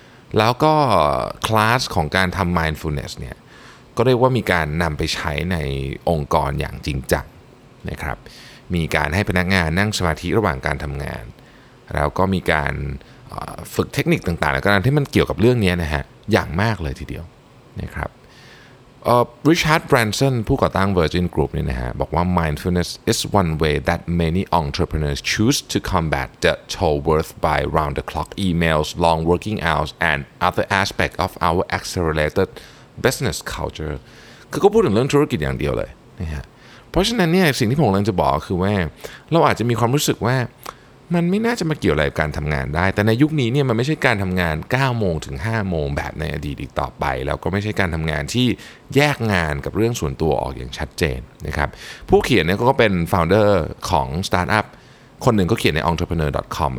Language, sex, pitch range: Thai, male, 75-115 Hz